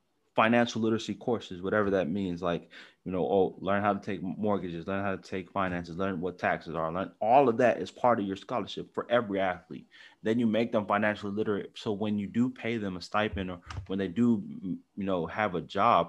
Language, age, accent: English, 20-39, American